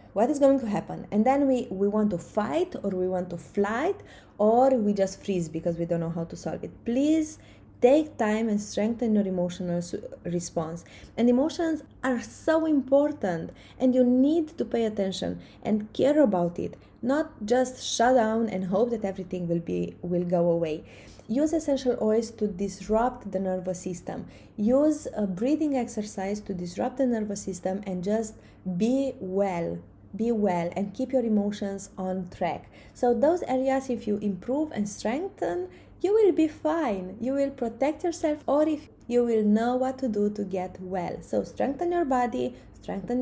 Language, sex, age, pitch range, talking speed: English, female, 20-39, 190-260 Hz, 175 wpm